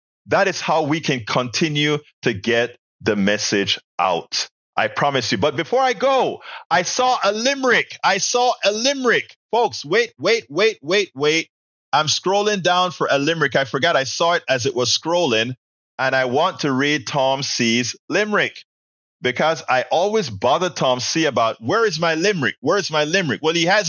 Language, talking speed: English, 185 wpm